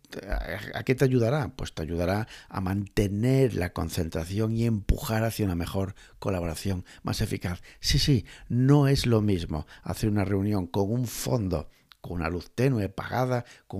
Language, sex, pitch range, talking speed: Spanish, male, 95-125 Hz, 160 wpm